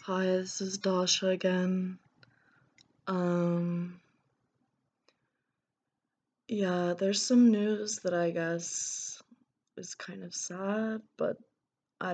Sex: female